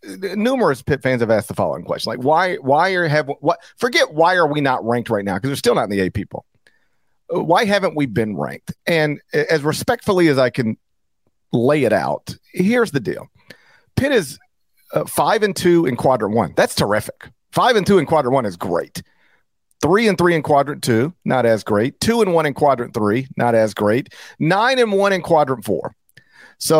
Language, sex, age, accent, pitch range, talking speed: English, male, 50-69, American, 115-160 Hz, 205 wpm